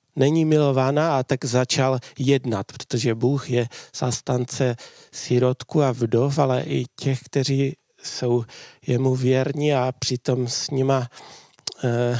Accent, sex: native, male